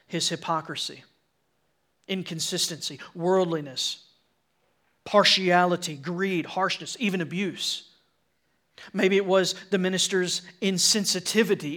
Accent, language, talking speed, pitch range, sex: American, English, 75 wpm, 165-195 Hz, male